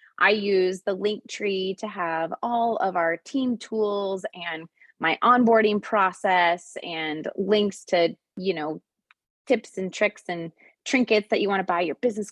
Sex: female